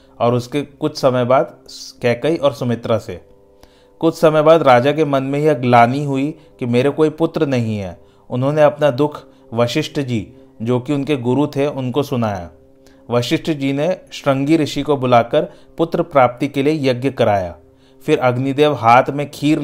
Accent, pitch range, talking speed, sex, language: native, 120-145 Hz, 170 wpm, male, Hindi